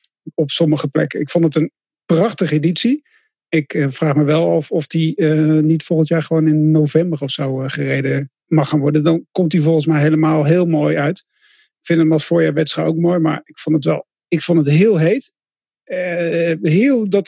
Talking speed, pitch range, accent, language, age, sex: 205 wpm, 155-180 Hz, Dutch, English, 50-69, male